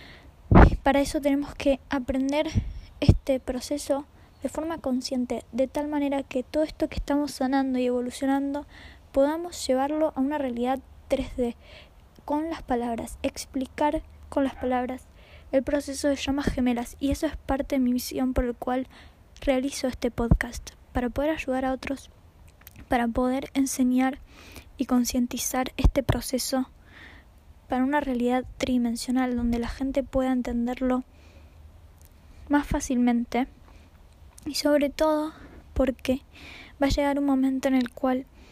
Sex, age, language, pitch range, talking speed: female, 20-39, Spanish, 250-280 Hz, 135 wpm